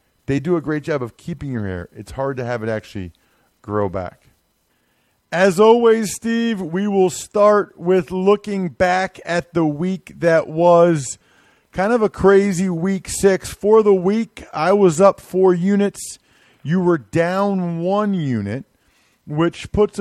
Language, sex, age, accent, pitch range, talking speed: English, male, 40-59, American, 135-190 Hz, 155 wpm